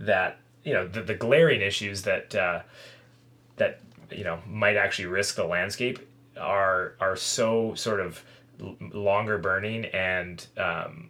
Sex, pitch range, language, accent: male, 90-120 Hz, English, American